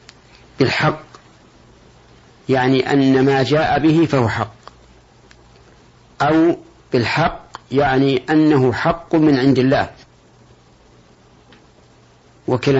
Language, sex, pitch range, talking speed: Arabic, male, 125-150 Hz, 80 wpm